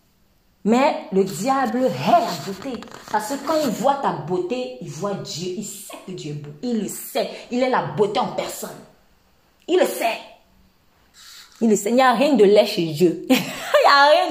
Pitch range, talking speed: 195-275 Hz, 195 wpm